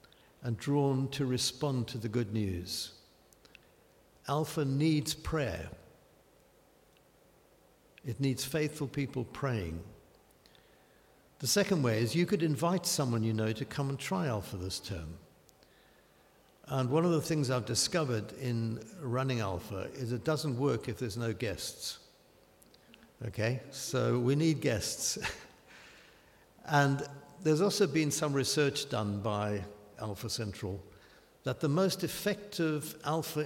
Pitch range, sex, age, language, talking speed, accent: 110-145 Hz, male, 60-79, English, 125 wpm, British